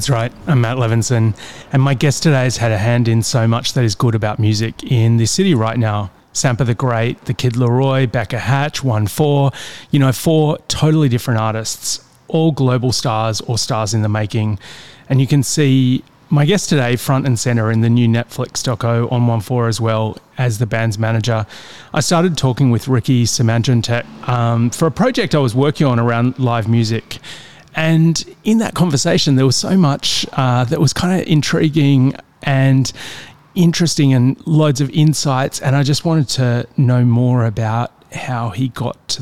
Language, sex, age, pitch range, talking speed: English, male, 30-49, 120-145 Hz, 190 wpm